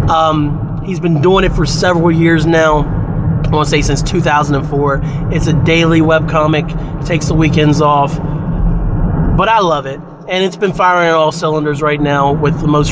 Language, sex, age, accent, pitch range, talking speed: English, male, 30-49, American, 145-170 Hz, 180 wpm